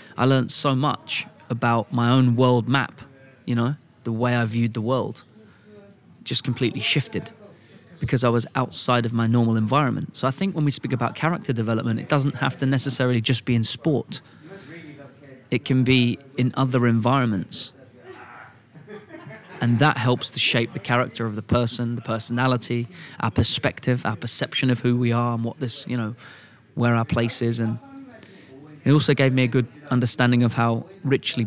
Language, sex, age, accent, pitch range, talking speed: English, male, 20-39, British, 115-140 Hz, 175 wpm